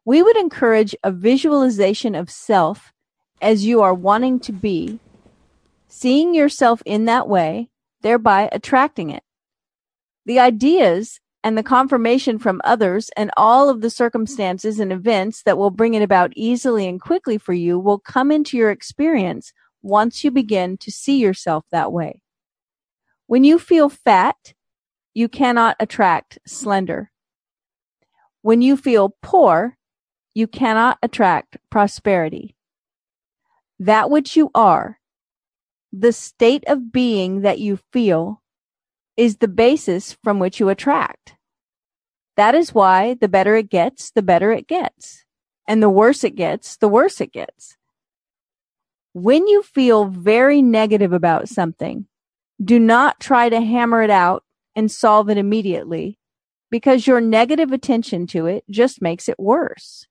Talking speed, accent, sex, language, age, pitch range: 140 wpm, American, female, English, 40-59, 200-255 Hz